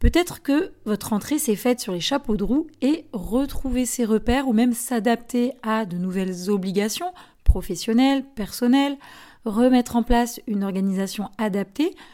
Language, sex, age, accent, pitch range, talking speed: French, female, 30-49, French, 210-275 Hz, 150 wpm